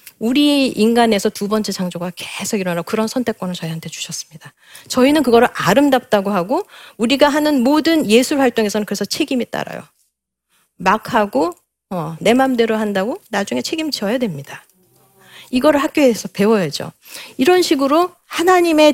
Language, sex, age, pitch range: Korean, female, 40-59, 180-265 Hz